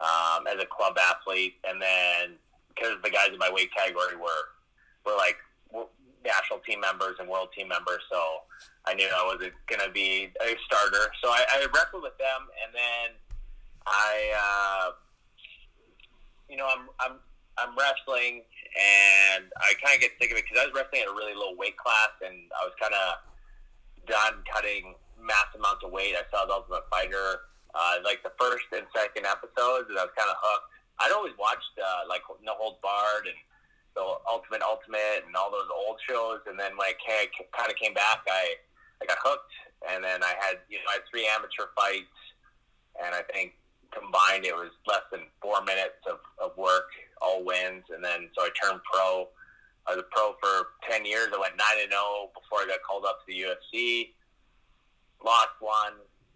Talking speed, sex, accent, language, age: 190 wpm, male, American, English, 30-49